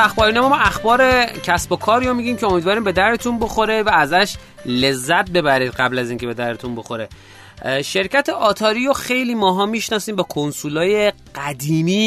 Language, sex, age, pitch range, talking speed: Persian, male, 30-49, 150-195 Hz, 150 wpm